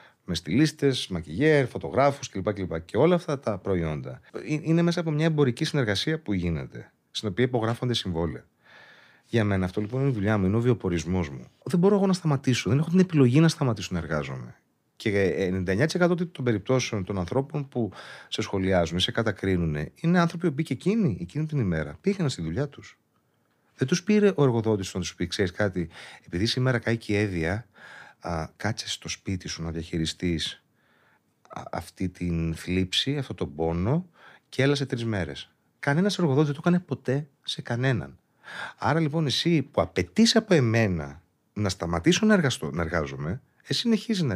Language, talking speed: Greek, 170 wpm